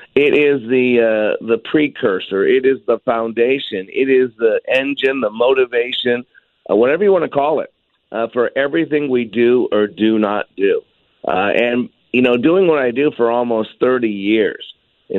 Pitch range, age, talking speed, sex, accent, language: 110-130 Hz, 50-69, 180 wpm, male, American, English